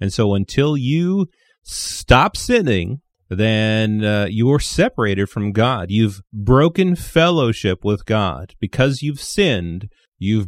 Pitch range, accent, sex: 100-135 Hz, American, male